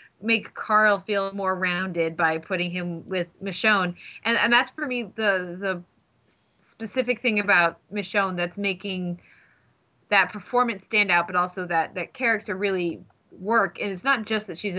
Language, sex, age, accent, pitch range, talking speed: English, female, 20-39, American, 175-215 Hz, 160 wpm